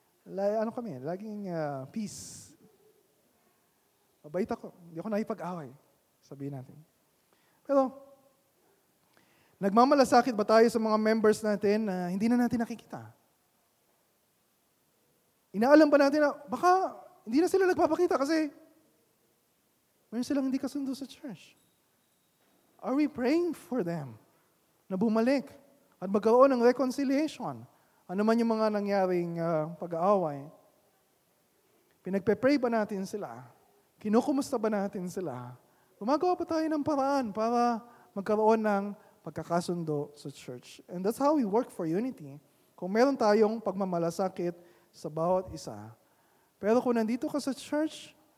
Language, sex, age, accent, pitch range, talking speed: Filipino, male, 20-39, native, 180-265 Hz, 120 wpm